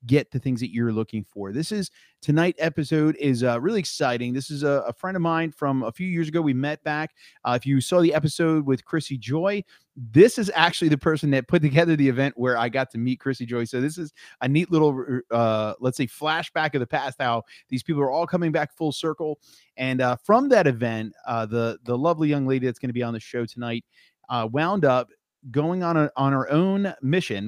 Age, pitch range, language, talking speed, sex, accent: 30-49, 130-160 Hz, English, 235 wpm, male, American